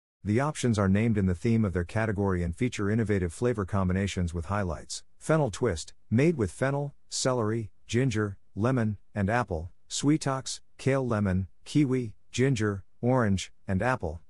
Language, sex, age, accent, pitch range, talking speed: English, male, 50-69, American, 90-120 Hz, 145 wpm